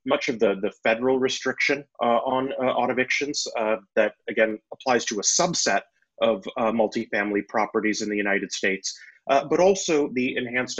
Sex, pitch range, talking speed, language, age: male, 110-145 Hz, 170 wpm, English, 30-49